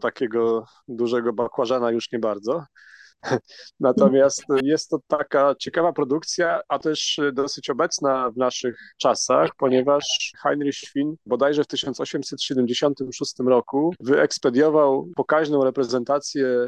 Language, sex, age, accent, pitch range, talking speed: Polish, male, 30-49, native, 120-140 Hz, 105 wpm